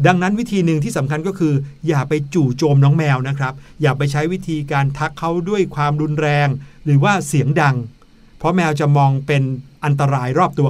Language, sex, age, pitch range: Thai, male, 60-79, 140-180 Hz